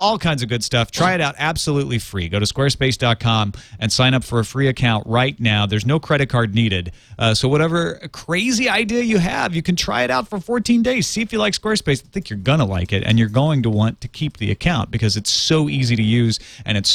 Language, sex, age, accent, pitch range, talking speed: English, male, 40-59, American, 115-165 Hz, 250 wpm